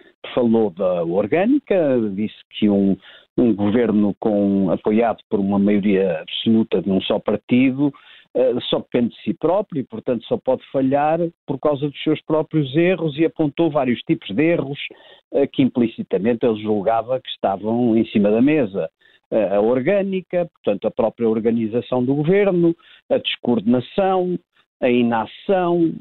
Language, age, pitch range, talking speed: Portuguese, 50-69, 110-165 Hz, 140 wpm